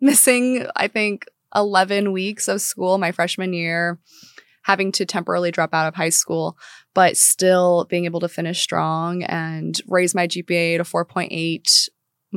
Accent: American